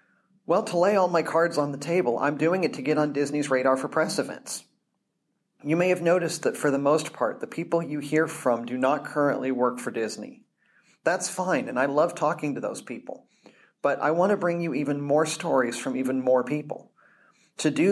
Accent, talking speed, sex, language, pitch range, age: American, 215 wpm, male, English, 135-170 Hz, 40-59